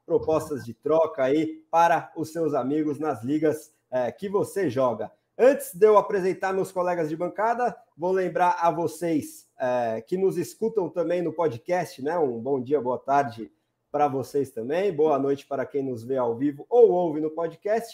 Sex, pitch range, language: male, 150-195 Hz, Portuguese